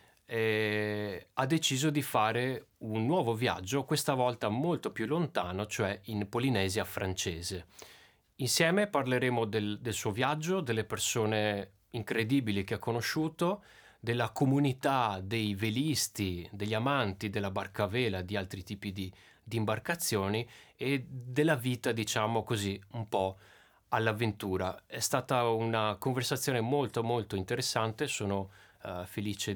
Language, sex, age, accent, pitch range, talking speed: Italian, male, 30-49, native, 105-130 Hz, 120 wpm